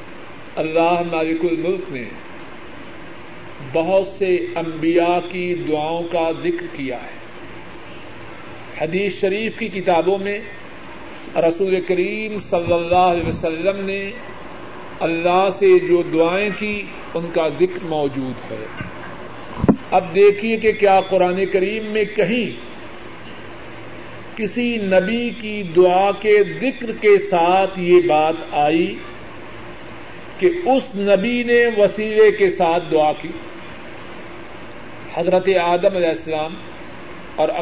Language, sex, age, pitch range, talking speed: Urdu, male, 50-69, 165-195 Hz, 110 wpm